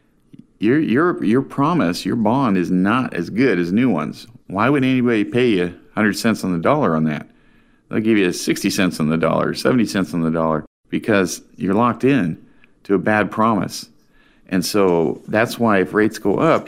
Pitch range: 90-115 Hz